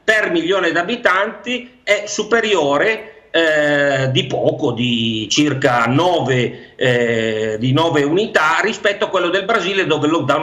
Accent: native